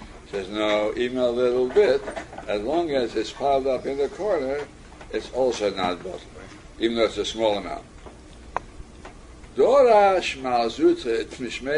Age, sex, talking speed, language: 60-79, male, 140 wpm, English